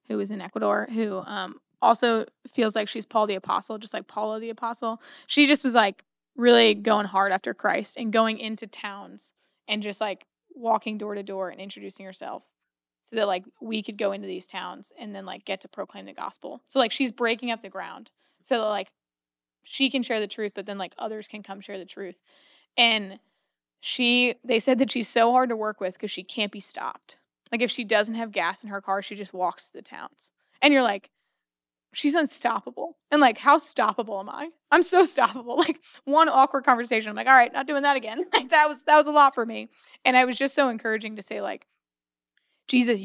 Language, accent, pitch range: English, American, 200-250 Hz